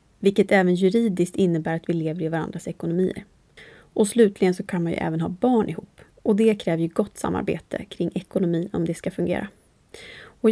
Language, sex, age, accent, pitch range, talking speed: English, female, 30-49, Swedish, 180-230 Hz, 190 wpm